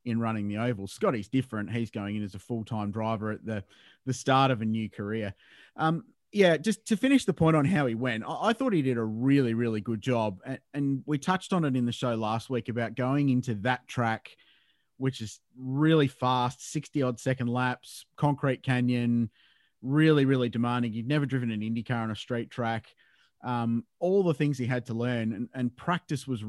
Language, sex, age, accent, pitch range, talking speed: English, male, 30-49, Australian, 115-145 Hz, 210 wpm